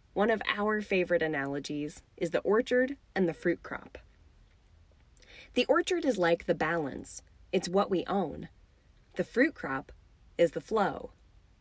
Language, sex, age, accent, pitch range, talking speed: English, female, 20-39, American, 160-225 Hz, 145 wpm